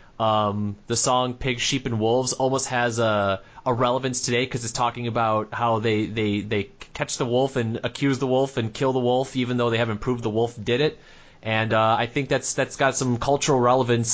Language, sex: English, male